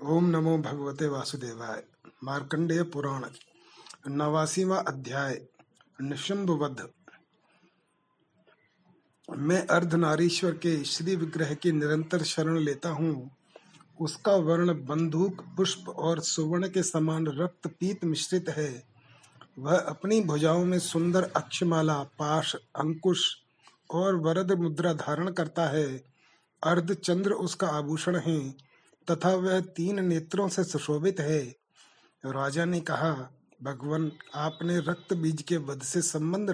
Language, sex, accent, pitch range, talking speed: Hindi, male, native, 150-180 Hz, 100 wpm